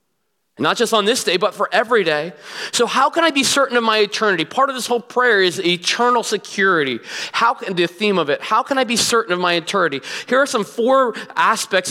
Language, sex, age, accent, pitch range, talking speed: English, male, 30-49, American, 195-245 Hz, 225 wpm